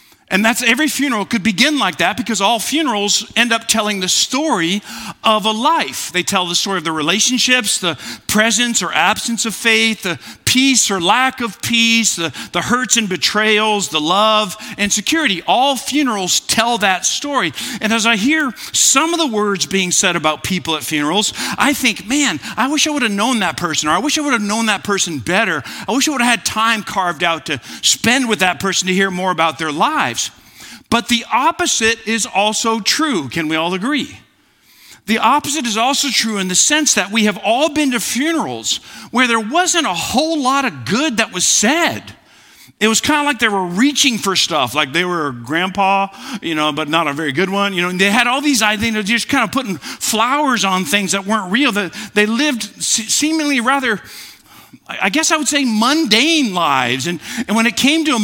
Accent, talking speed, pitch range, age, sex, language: American, 210 wpm, 195-265 Hz, 50-69, male, English